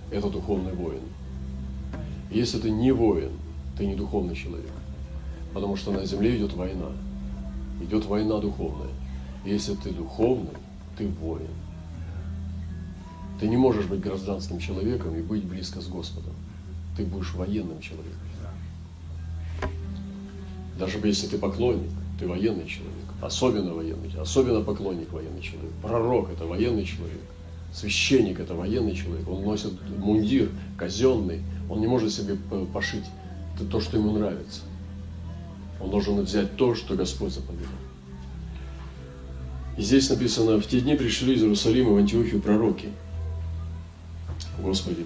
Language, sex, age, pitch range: Russian, male, 40-59, 80-100 Hz